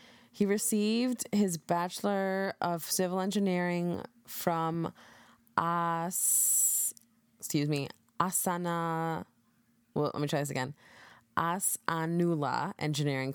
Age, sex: 20-39, female